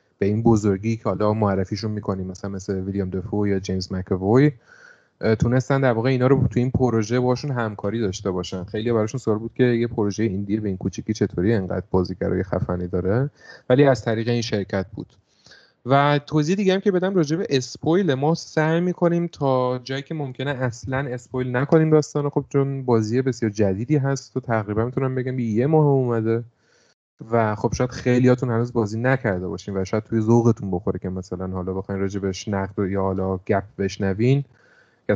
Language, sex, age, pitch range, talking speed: Persian, male, 30-49, 105-135 Hz, 185 wpm